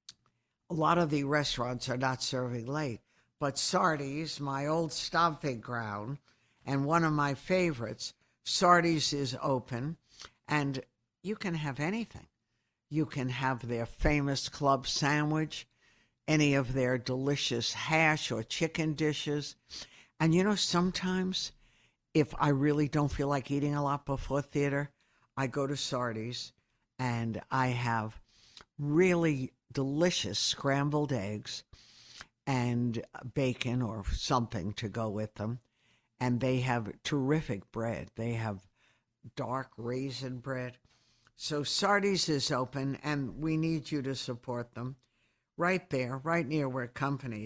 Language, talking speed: English, 130 wpm